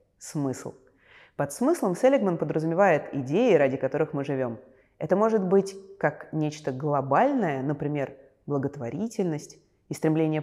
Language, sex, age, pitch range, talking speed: Russian, female, 20-39, 145-210 Hz, 115 wpm